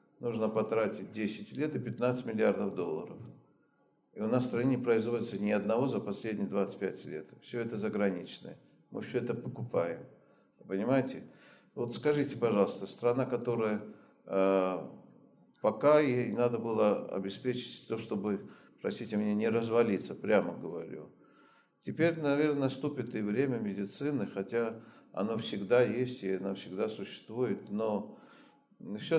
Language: Russian